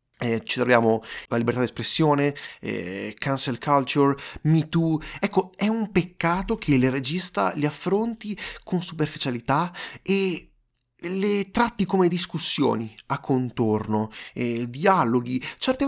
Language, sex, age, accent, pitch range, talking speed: Italian, male, 30-49, native, 120-185 Hz, 120 wpm